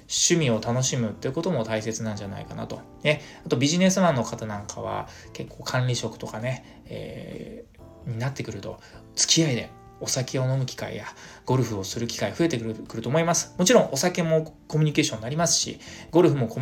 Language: Japanese